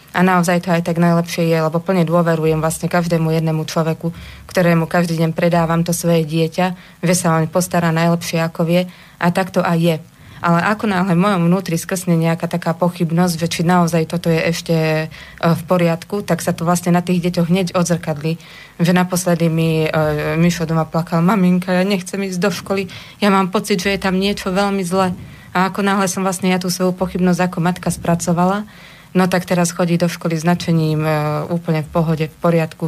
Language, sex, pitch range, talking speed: Slovak, female, 165-180 Hz, 195 wpm